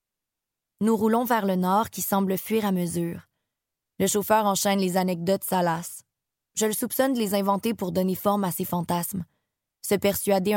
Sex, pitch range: female, 185-210 Hz